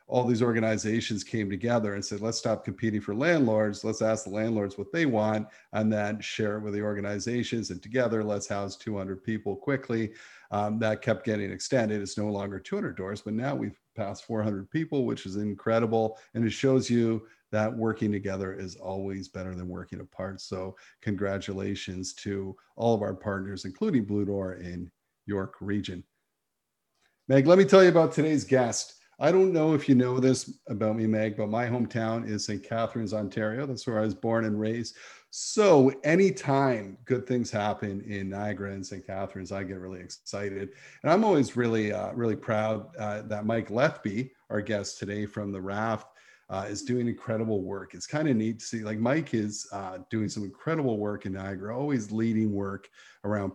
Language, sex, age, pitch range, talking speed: English, male, 50-69, 100-115 Hz, 185 wpm